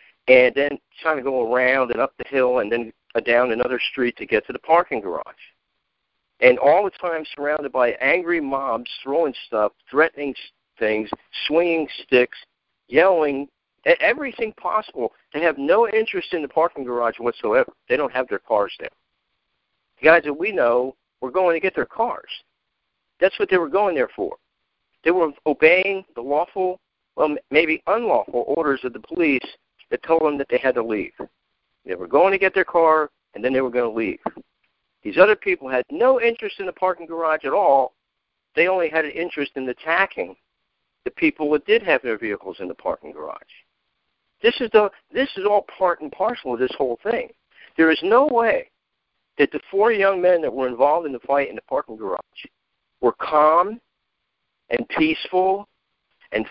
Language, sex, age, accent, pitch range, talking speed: English, male, 50-69, American, 140-215 Hz, 180 wpm